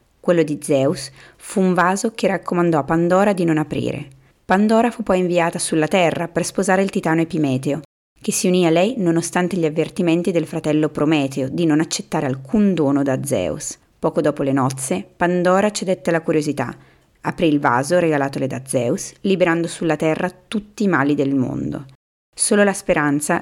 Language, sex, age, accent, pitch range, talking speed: Italian, female, 30-49, native, 150-185 Hz, 170 wpm